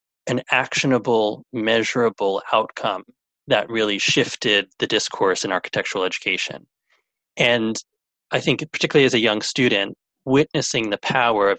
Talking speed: 125 wpm